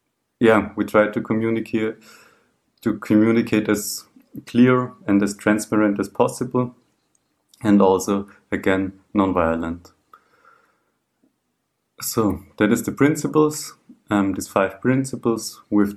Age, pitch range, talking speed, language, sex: 30-49, 100-115 Hz, 105 wpm, German, male